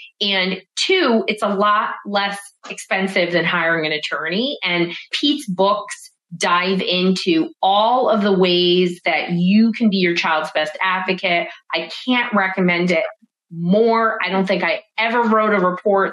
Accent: American